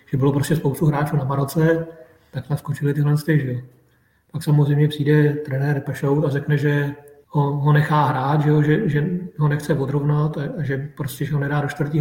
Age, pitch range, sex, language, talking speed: 40-59, 140-155 Hz, male, Czech, 190 wpm